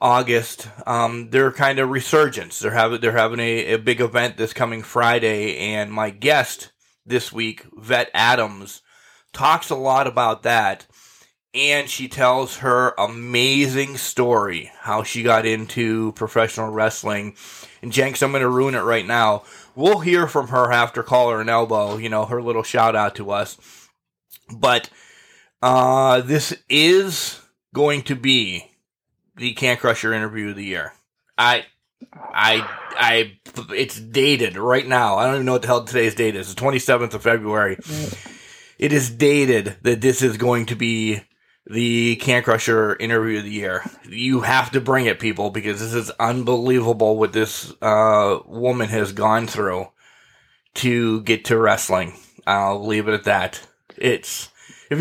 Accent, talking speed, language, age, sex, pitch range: American, 160 wpm, English, 20-39, male, 110-130 Hz